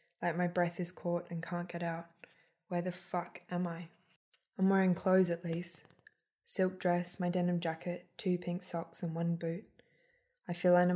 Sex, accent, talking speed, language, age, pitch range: female, Australian, 180 wpm, English, 20-39, 165-180 Hz